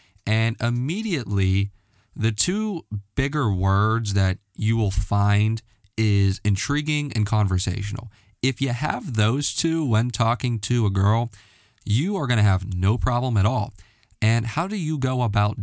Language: English